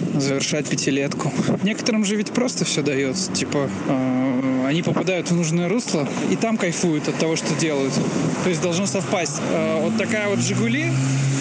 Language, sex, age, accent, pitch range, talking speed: Russian, male, 20-39, native, 160-220 Hz, 165 wpm